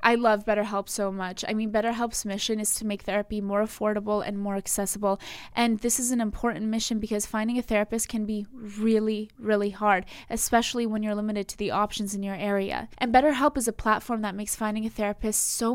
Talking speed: 205 wpm